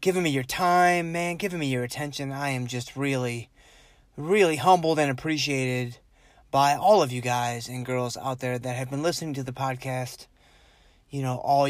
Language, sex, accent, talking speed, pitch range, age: English, male, American, 185 wpm, 125-145 Hz, 20-39